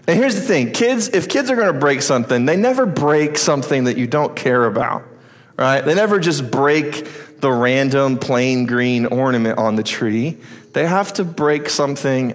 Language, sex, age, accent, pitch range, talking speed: English, male, 30-49, American, 125-160 Hz, 190 wpm